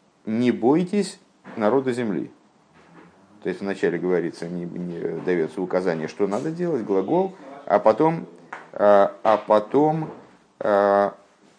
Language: Russian